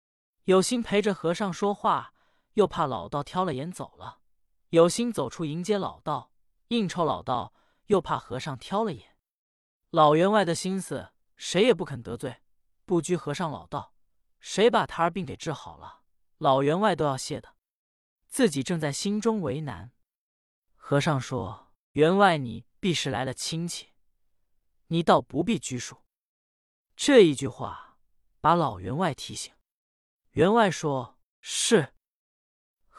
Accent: native